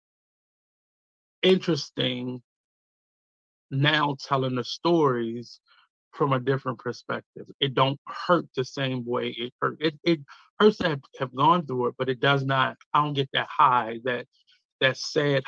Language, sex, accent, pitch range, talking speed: English, male, American, 130-150 Hz, 145 wpm